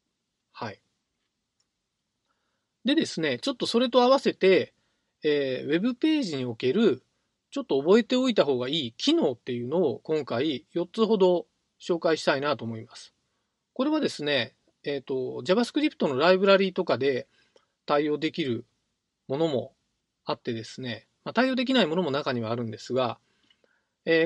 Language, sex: Japanese, male